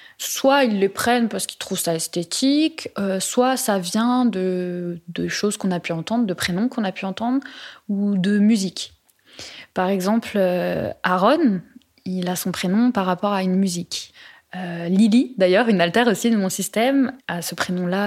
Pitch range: 180-230 Hz